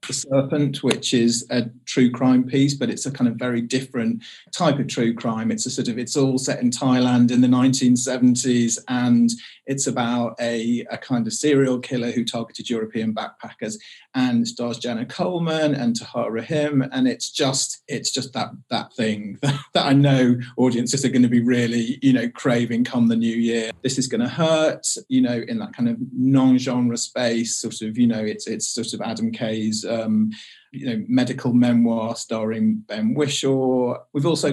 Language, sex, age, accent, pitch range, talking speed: English, male, 40-59, British, 115-140 Hz, 190 wpm